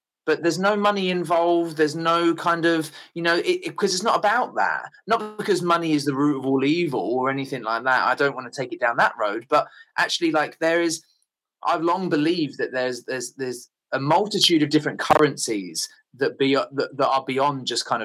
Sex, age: male, 20-39